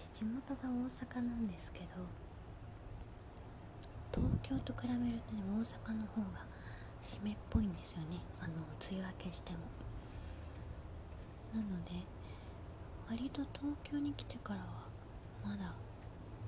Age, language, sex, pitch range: 20-39, Japanese, female, 95-115 Hz